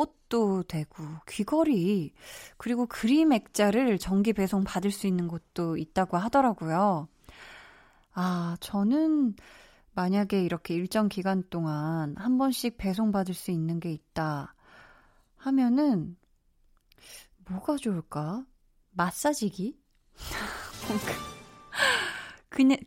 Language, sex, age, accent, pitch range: Korean, female, 20-39, native, 180-240 Hz